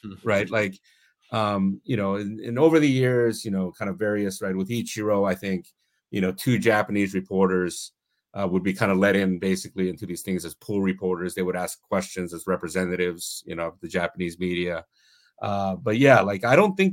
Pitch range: 95-115 Hz